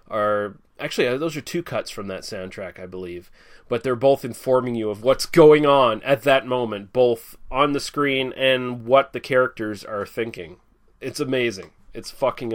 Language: English